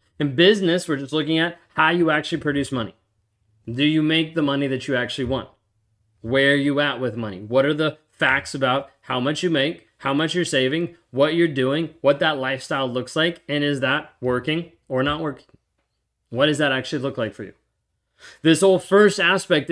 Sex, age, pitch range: male, 30-49, 130-165 Hz